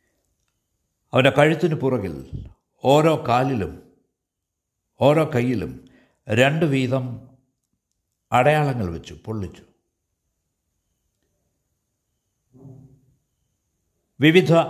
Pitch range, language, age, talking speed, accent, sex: 95-135 Hz, Malayalam, 60-79, 55 wpm, native, male